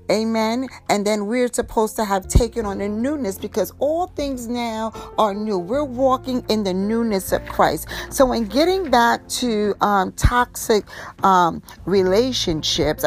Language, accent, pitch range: English, American, 180-240 Hz